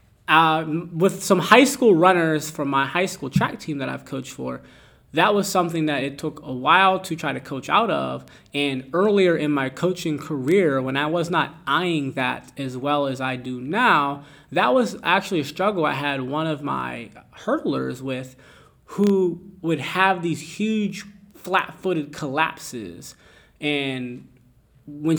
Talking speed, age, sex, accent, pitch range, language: 165 wpm, 20-39, male, American, 130-175 Hz, English